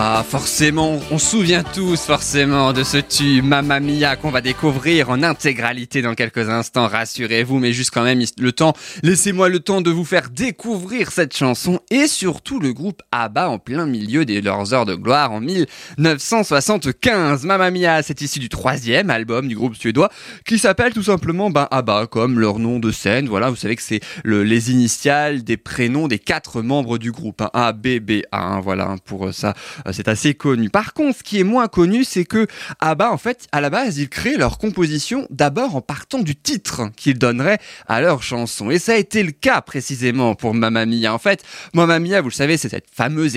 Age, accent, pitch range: 20-39, French, 120-180 Hz